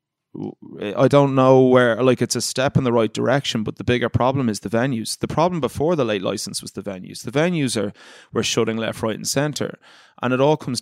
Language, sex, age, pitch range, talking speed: English, male, 20-39, 110-125 Hz, 225 wpm